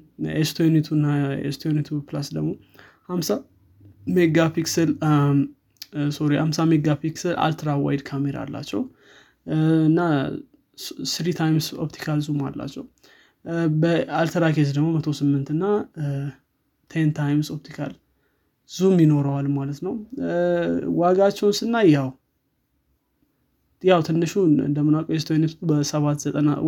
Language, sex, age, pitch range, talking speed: Amharic, male, 20-39, 145-165 Hz, 35 wpm